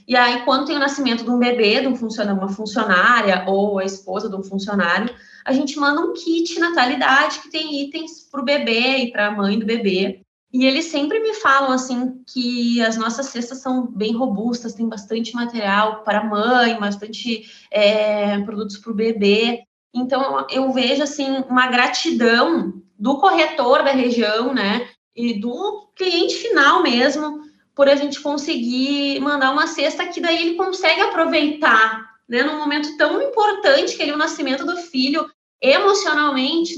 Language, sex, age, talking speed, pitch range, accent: Portuguese, female, 20-39, 165 wpm, 235-295 Hz, Brazilian